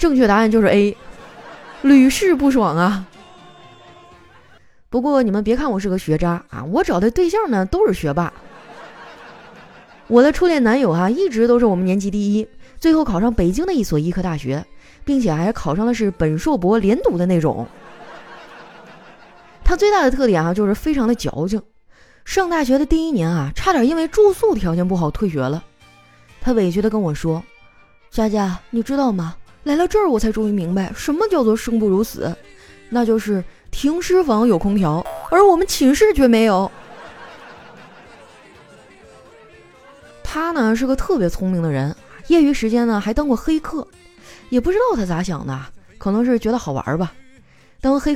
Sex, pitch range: female, 185-280 Hz